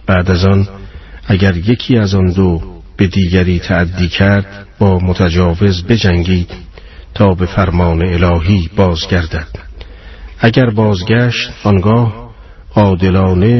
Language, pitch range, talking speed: Persian, 85-105 Hz, 105 wpm